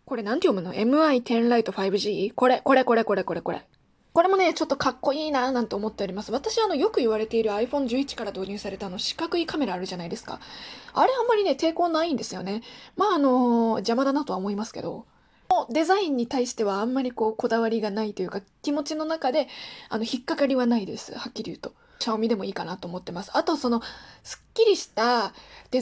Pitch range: 205-270 Hz